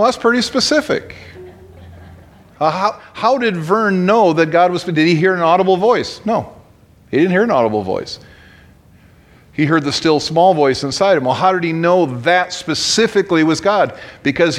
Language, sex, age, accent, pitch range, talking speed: English, male, 40-59, American, 140-185 Hz, 175 wpm